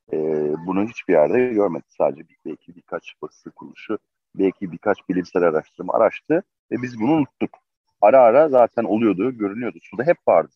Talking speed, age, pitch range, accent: 160 wpm, 40-59, 100-125 Hz, native